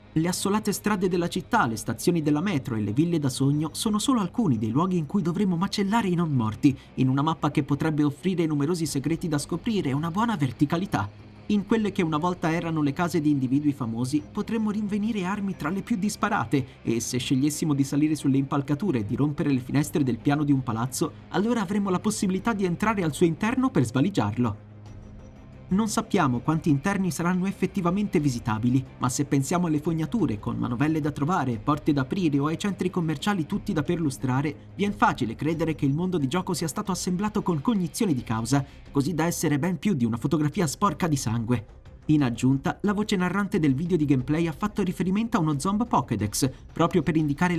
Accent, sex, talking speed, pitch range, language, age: native, male, 200 wpm, 140-185 Hz, Italian, 30-49